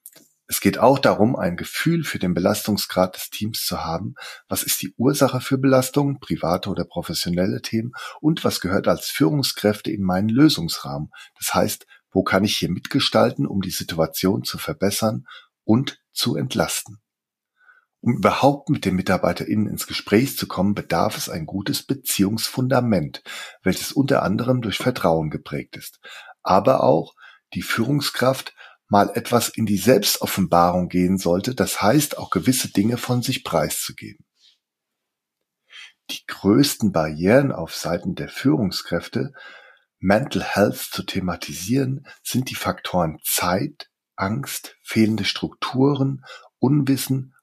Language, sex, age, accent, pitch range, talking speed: German, male, 40-59, German, 95-130 Hz, 135 wpm